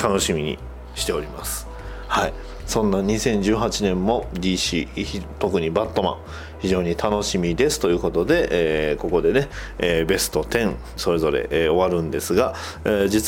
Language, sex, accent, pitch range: Japanese, male, native, 85-130 Hz